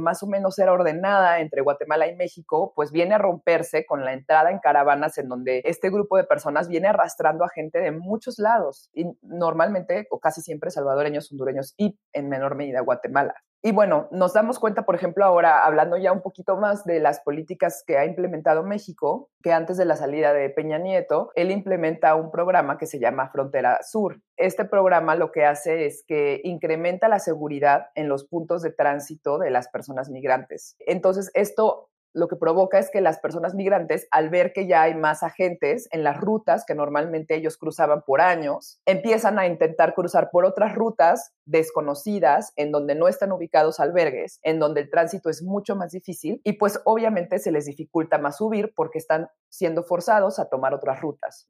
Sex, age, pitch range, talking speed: female, 30-49, 155-195 Hz, 190 wpm